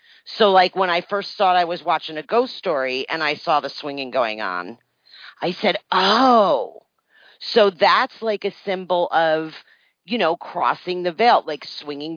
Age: 40-59